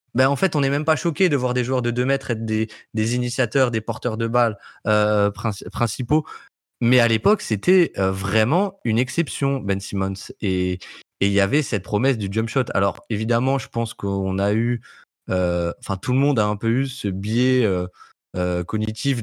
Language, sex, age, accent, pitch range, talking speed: French, male, 20-39, French, 105-135 Hz, 205 wpm